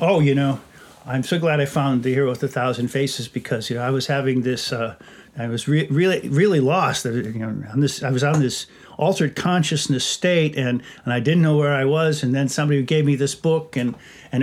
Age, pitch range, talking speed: 50-69, 130-165 Hz, 235 wpm